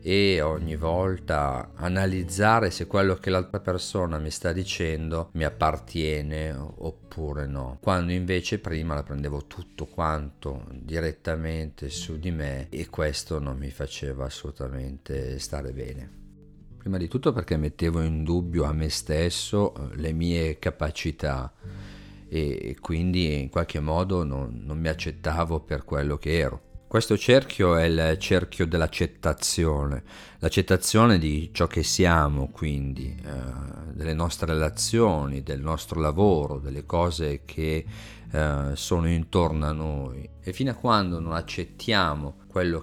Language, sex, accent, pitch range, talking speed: Italian, male, native, 75-90 Hz, 130 wpm